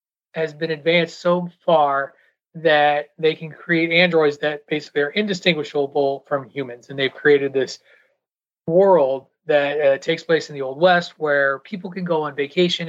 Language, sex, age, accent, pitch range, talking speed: English, male, 30-49, American, 140-170 Hz, 165 wpm